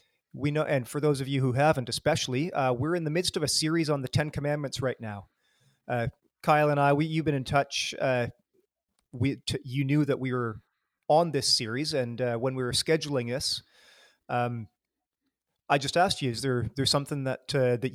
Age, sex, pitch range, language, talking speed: 30-49, male, 125-150 Hz, English, 210 wpm